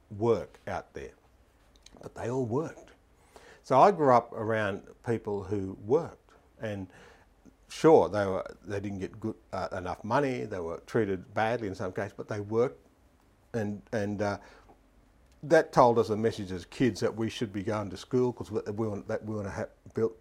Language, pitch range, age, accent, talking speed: English, 95-110 Hz, 50-69, Australian, 170 wpm